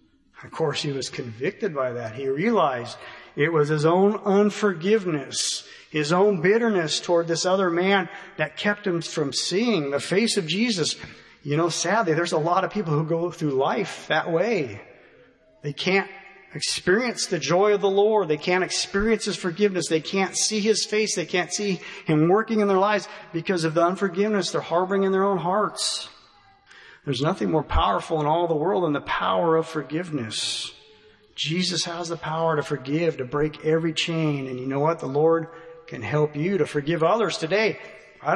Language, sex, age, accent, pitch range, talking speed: English, male, 40-59, American, 155-200 Hz, 185 wpm